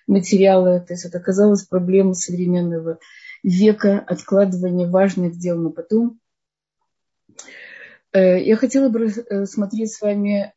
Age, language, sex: 20-39, Russian, female